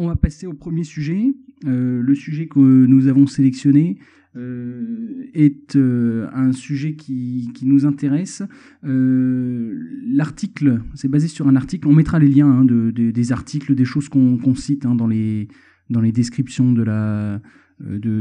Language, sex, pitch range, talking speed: French, male, 120-145 Hz, 155 wpm